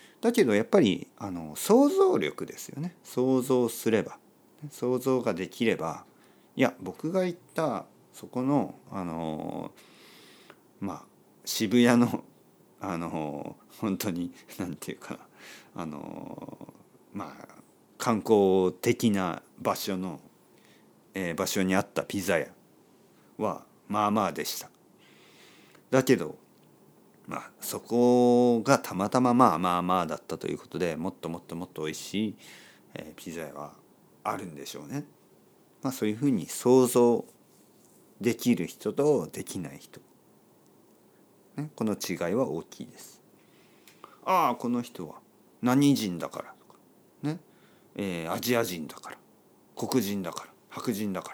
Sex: male